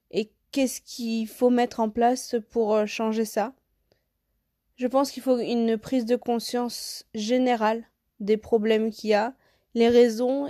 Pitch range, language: 210-245 Hz, French